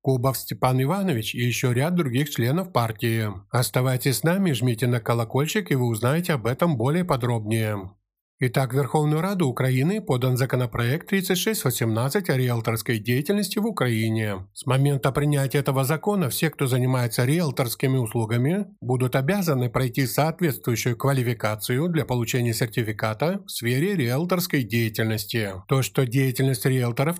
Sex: male